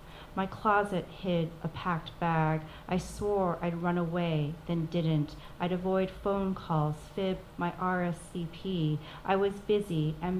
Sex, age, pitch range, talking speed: female, 40-59, 155-185 Hz, 140 wpm